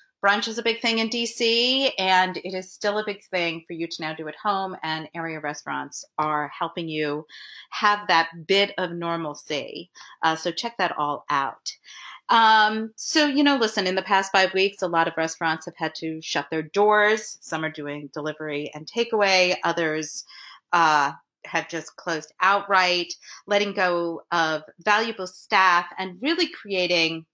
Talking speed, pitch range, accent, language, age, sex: 170 wpm, 160-205 Hz, American, English, 40-59, female